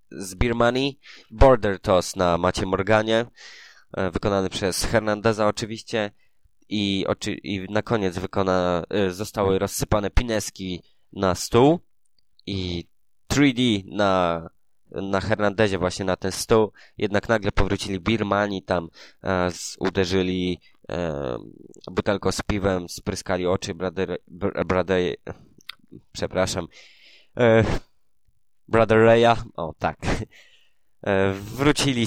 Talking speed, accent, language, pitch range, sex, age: 90 wpm, native, Polish, 90-110 Hz, male, 20-39